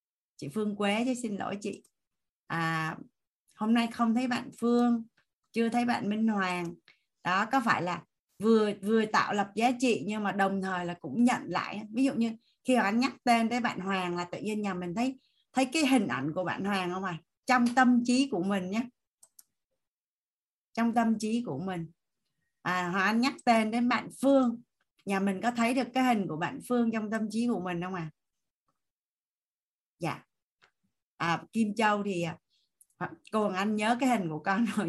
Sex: female